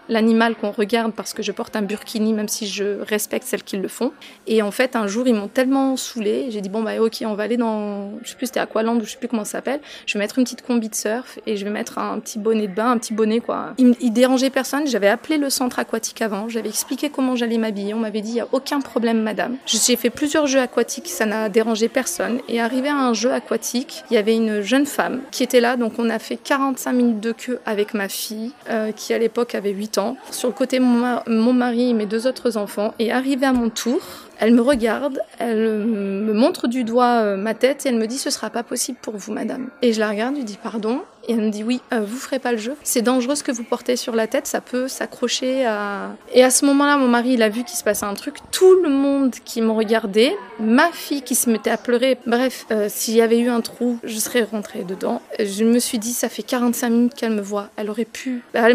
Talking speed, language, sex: 260 wpm, French, female